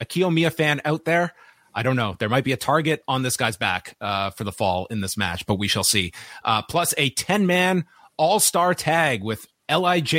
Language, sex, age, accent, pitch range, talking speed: English, male, 30-49, American, 120-160 Hz, 210 wpm